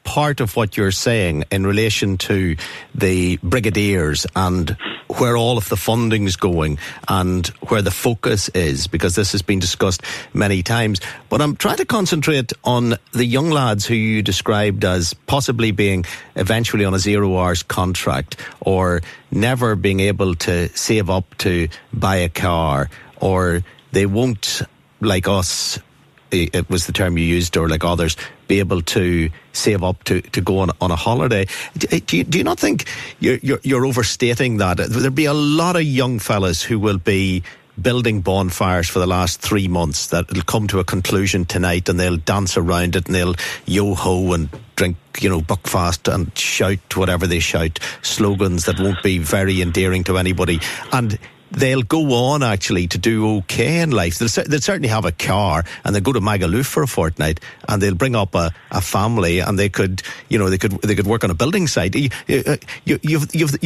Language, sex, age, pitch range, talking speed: English, male, 50-69, 90-115 Hz, 180 wpm